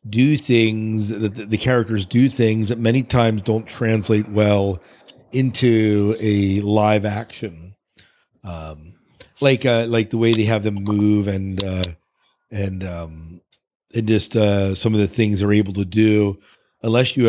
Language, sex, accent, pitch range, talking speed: English, male, American, 100-120 Hz, 155 wpm